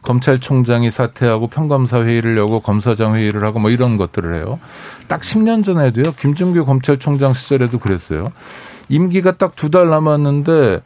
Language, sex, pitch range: Korean, male, 120-165 Hz